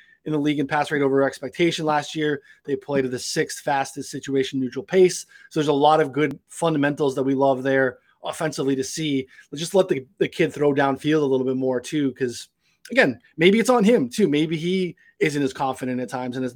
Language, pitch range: English, 135-160 Hz